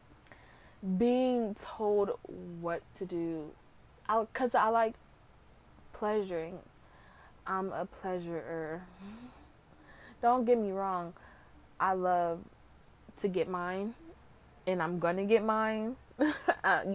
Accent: American